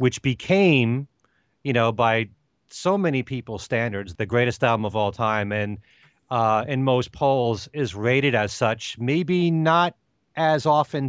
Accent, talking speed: American, 150 wpm